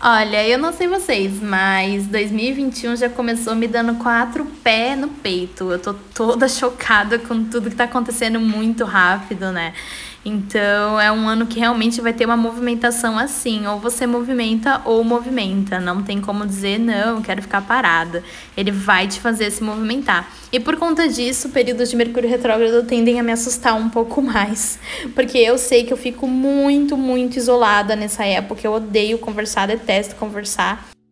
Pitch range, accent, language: 205-245 Hz, Brazilian, Portuguese